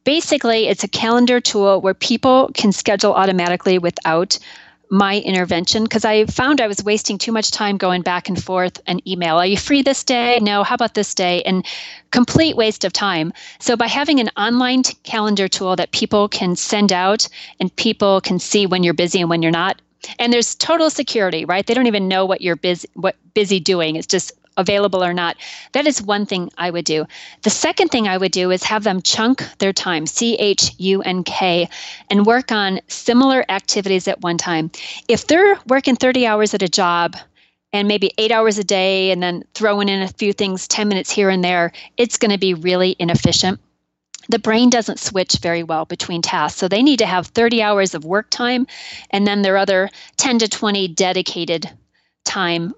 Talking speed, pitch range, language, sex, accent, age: 200 wpm, 180-225 Hz, English, female, American, 30-49